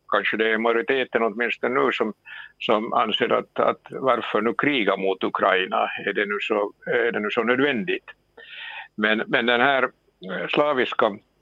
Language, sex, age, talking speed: Swedish, male, 60-79, 160 wpm